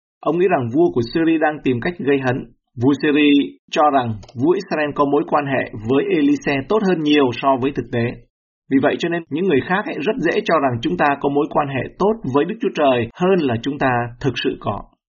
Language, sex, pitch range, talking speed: Vietnamese, male, 120-150 Hz, 235 wpm